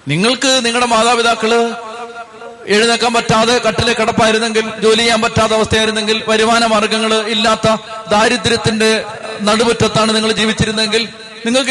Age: 30-49